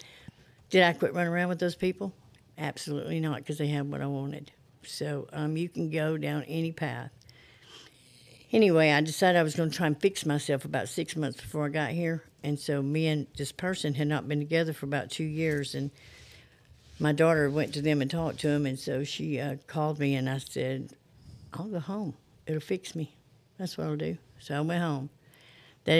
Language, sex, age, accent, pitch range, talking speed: English, female, 60-79, American, 140-155 Hz, 210 wpm